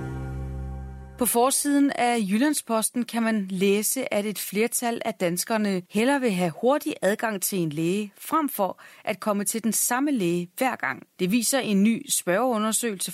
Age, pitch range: 30-49, 175-235 Hz